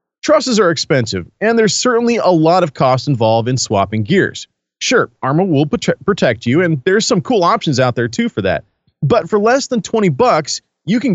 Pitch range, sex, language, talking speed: 120-195 Hz, male, English, 205 wpm